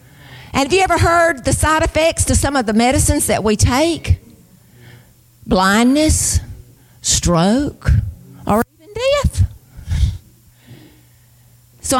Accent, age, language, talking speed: American, 50-69, English, 110 wpm